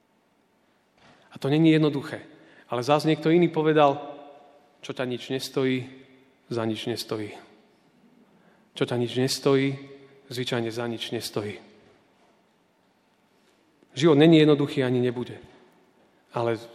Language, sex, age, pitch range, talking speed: Slovak, male, 40-59, 125-150 Hz, 110 wpm